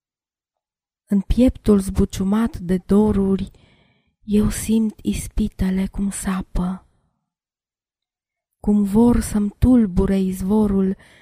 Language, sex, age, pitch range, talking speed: Romanian, female, 20-39, 190-215 Hz, 80 wpm